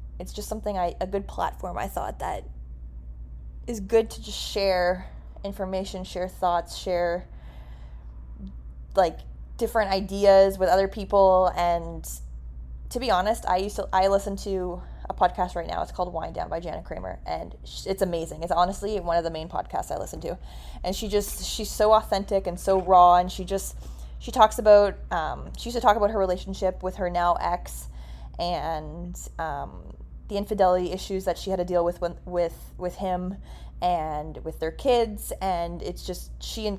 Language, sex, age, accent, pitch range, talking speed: English, female, 20-39, American, 160-190 Hz, 180 wpm